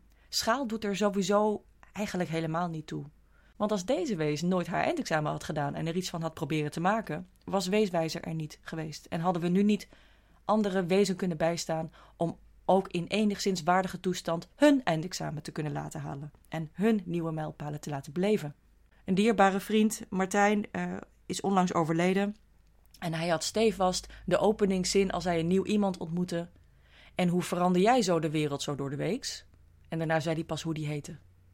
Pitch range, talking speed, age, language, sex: 155-195 Hz, 185 wpm, 30-49, Dutch, female